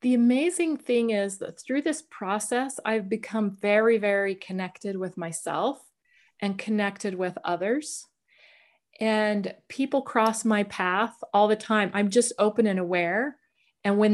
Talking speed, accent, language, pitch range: 145 wpm, American, English, 185-215 Hz